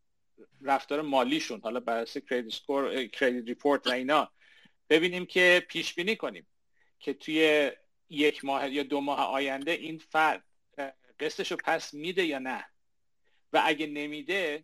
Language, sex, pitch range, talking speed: Persian, male, 135-155 Hz, 125 wpm